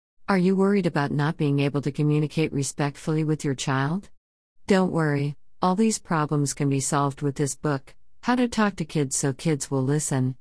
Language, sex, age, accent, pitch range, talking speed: English, female, 50-69, American, 130-160 Hz, 190 wpm